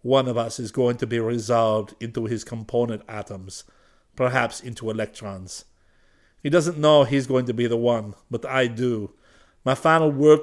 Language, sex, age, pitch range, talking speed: English, male, 50-69, 100-130 Hz, 175 wpm